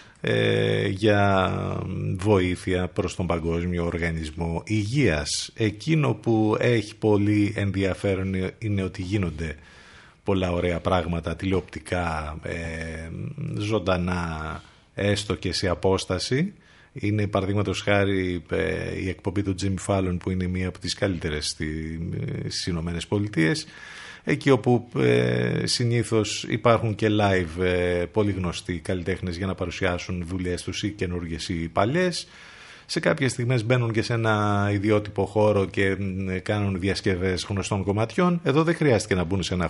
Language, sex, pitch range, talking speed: Greek, male, 90-120 Hz, 125 wpm